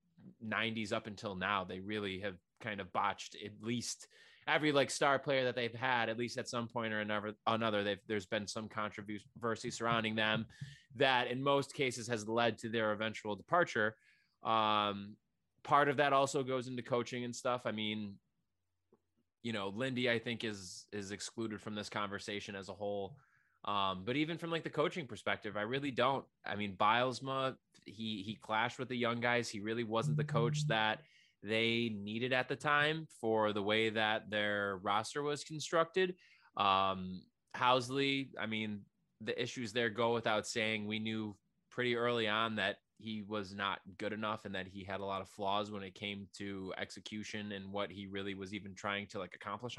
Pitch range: 105-130 Hz